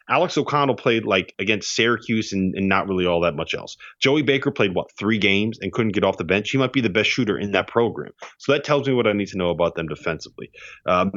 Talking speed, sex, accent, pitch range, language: 260 wpm, male, American, 95-125 Hz, English